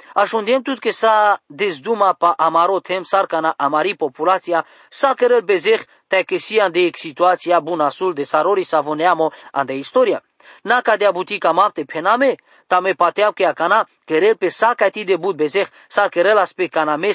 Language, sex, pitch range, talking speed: English, male, 170-230 Hz, 170 wpm